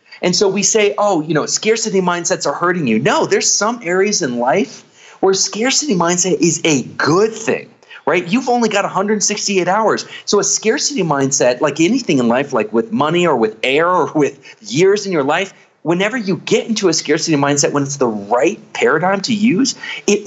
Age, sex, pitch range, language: 30-49, male, 145-205 Hz, English